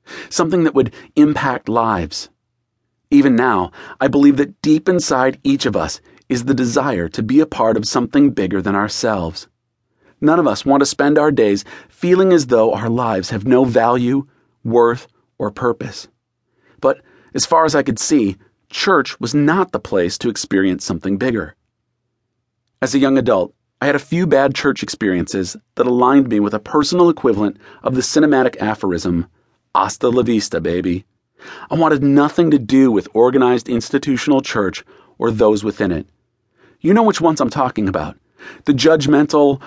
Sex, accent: male, American